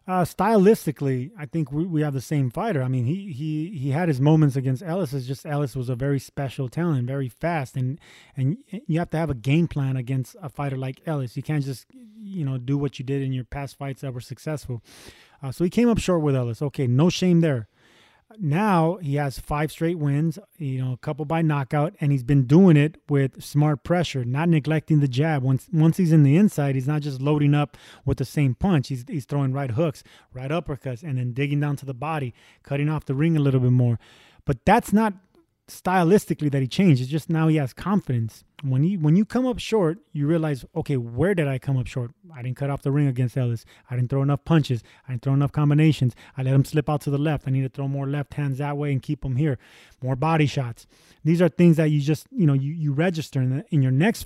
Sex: male